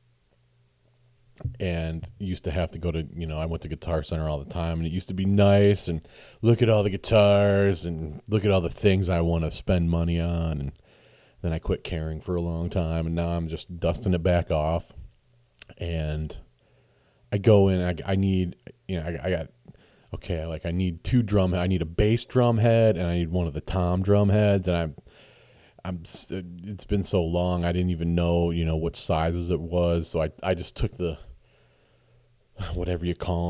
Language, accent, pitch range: English, American, 85-105 Hz